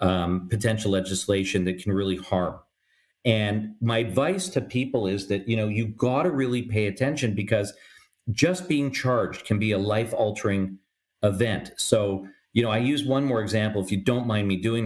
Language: English